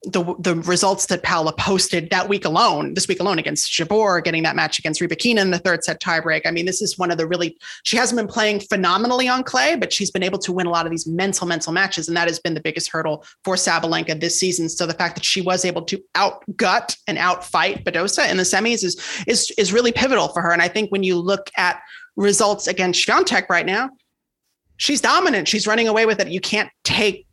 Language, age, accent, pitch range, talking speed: English, 30-49, American, 170-210 Hz, 235 wpm